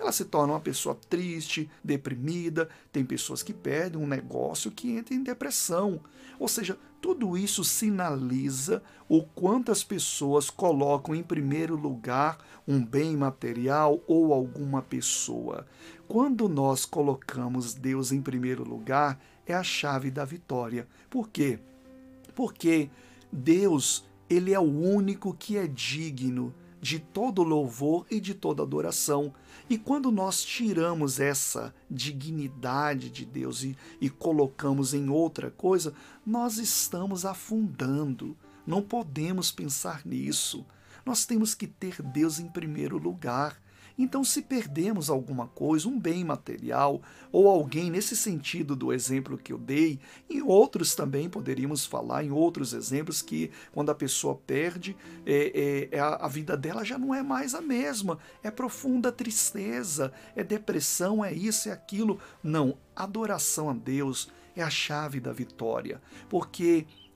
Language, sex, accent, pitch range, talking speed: Portuguese, male, Brazilian, 140-200 Hz, 135 wpm